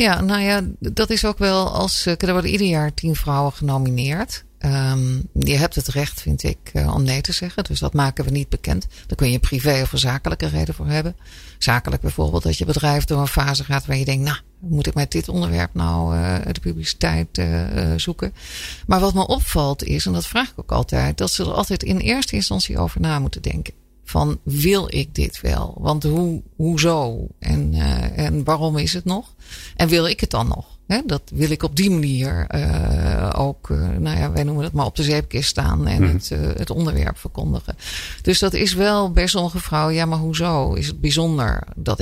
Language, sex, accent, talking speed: Dutch, female, Dutch, 200 wpm